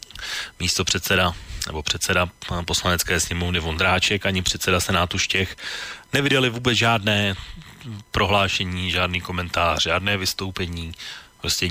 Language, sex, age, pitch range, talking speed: Slovak, male, 30-49, 85-95 Hz, 100 wpm